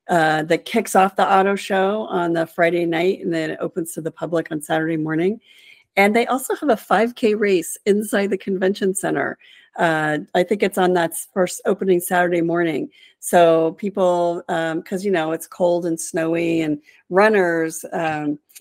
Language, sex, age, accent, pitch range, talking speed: English, female, 50-69, American, 165-200 Hz, 175 wpm